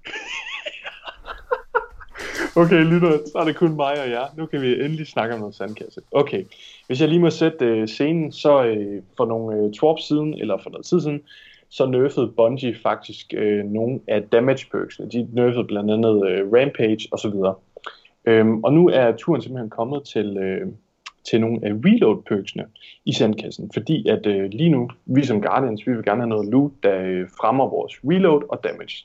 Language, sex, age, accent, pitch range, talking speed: Danish, male, 20-39, native, 105-140 Hz, 185 wpm